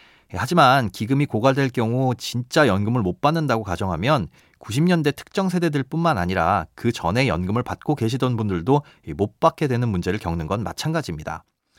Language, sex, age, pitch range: Korean, male, 30-49, 100-150 Hz